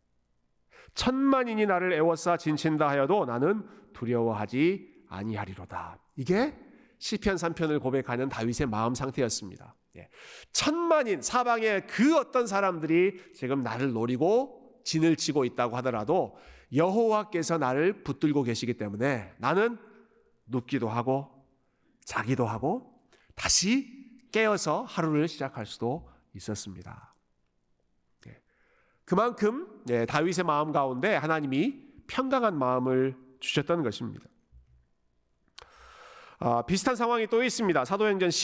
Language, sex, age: Korean, male, 40-59